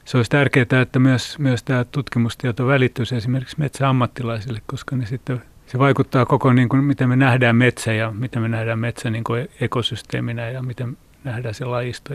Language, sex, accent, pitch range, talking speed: Finnish, male, native, 115-130 Hz, 185 wpm